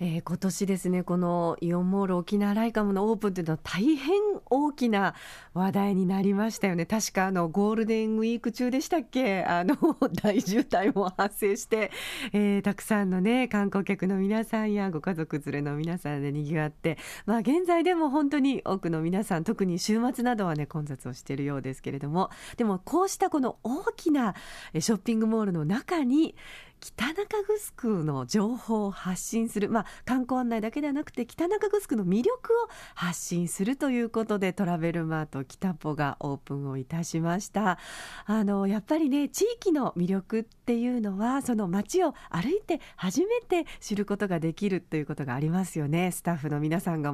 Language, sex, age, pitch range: Japanese, female, 40-59, 170-245 Hz